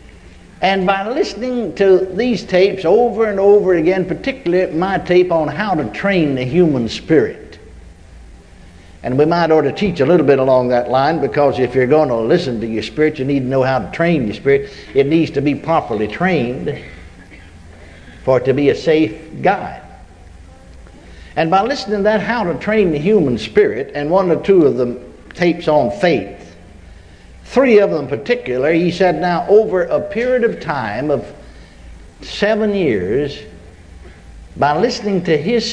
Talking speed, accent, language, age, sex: 175 wpm, American, English, 60-79, male